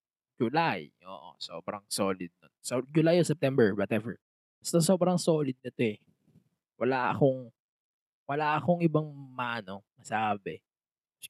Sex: male